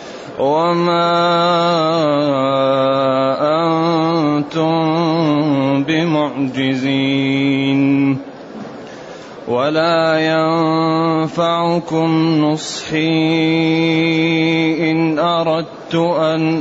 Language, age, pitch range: Arabic, 30-49, 150-165 Hz